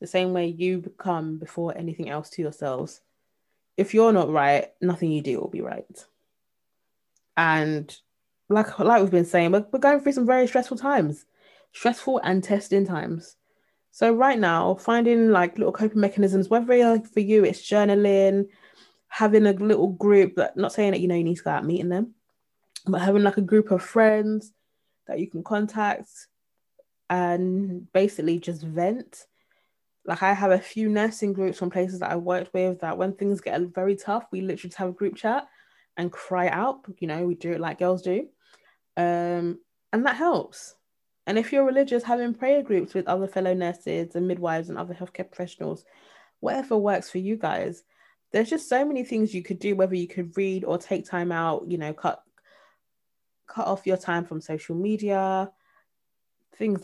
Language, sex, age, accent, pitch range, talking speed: English, female, 20-39, British, 175-215 Hz, 185 wpm